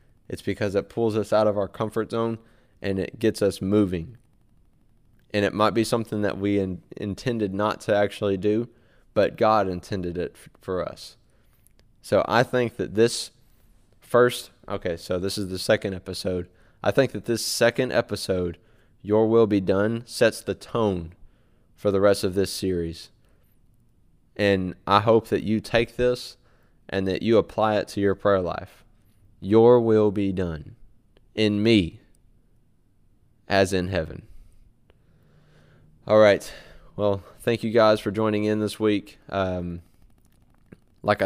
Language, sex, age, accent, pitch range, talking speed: English, male, 20-39, American, 95-110 Hz, 150 wpm